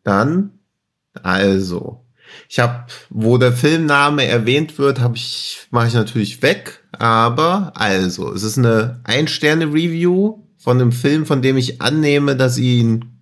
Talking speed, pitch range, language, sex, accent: 135 wpm, 120-145 Hz, German, male, German